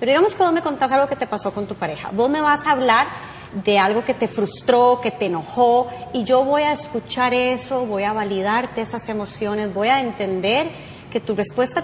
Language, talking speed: Spanish, 215 wpm